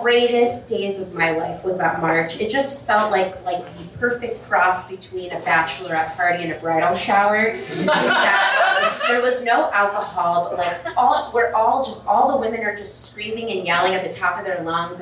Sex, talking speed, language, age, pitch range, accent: female, 195 wpm, English, 20-39, 170-220 Hz, American